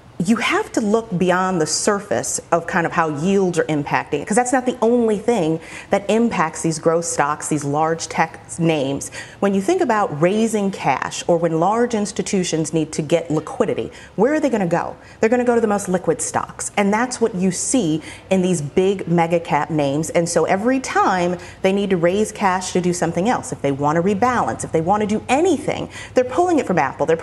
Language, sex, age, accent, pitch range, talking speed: English, female, 30-49, American, 160-225 Hz, 220 wpm